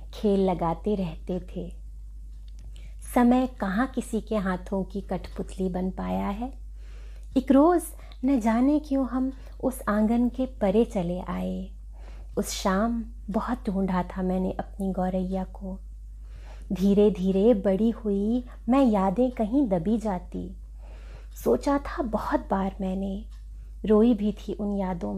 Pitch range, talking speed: 185-230 Hz, 130 wpm